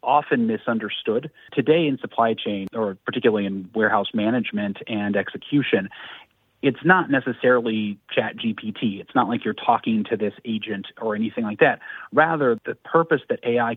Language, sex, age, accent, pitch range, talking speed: English, male, 30-49, American, 110-160 Hz, 155 wpm